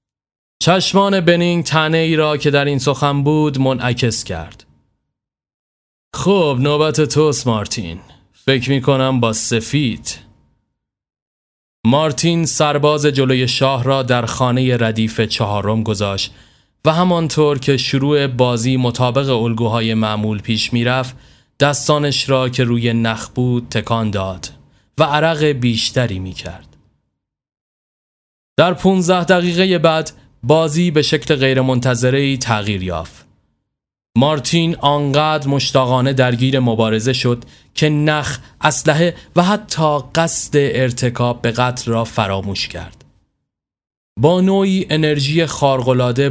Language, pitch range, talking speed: Persian, 115-150 Hz, 110 wpm